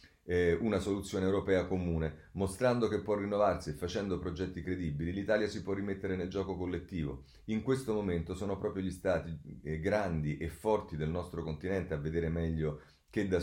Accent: native